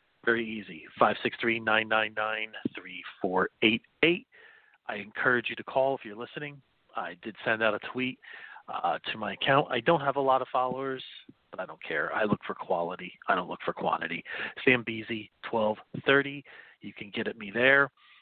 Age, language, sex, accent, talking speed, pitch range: 40-59, English, male, American, 200 wpm, 110-145 Hz